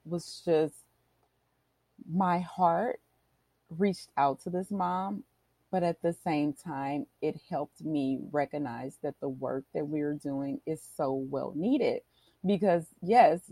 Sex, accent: female, American